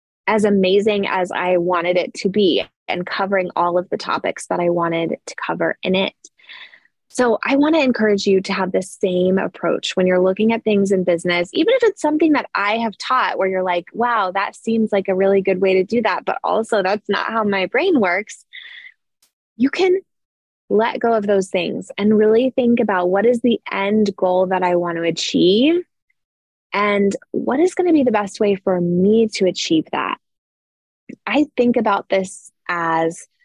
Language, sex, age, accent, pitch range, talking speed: English, female, 20-39, American, 185-240 Hz, 195 wpm